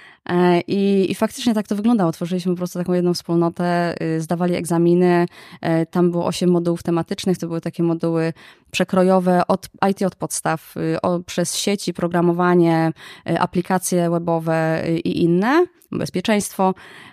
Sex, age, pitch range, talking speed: female, 20-39, 165-185 Hz, 130 wpm